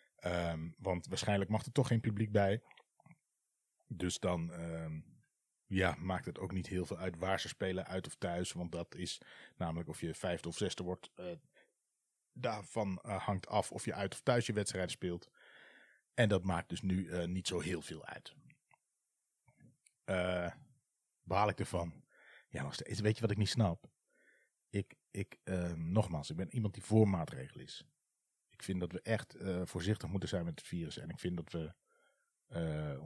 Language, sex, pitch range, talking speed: Dutch, male, 90-110 Hz, 180 wpm